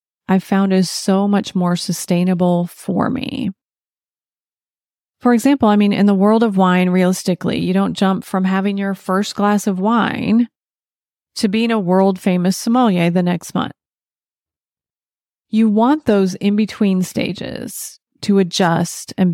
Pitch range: 180-215 Hz